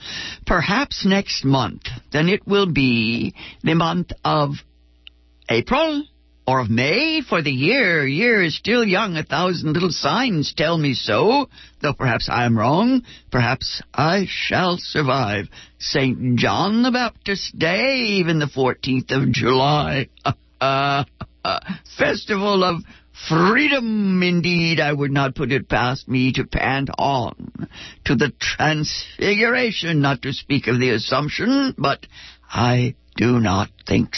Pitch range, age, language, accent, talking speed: 125-170 Hz, 50-69, English, American, 135 wpm